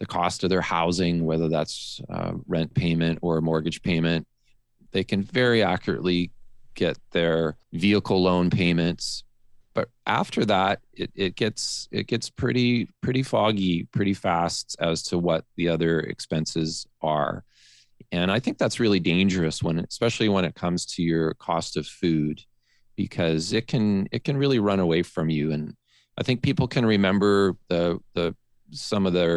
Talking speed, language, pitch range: 160 wpm, English, 85-115 Hz